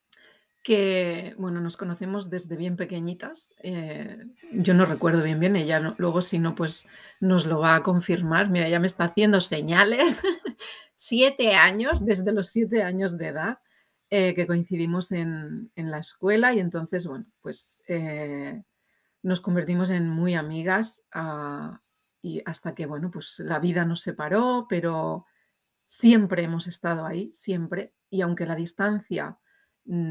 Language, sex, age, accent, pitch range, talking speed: Spanish, female, 30-49, Spanish, 165-195 Hz, 150 wpm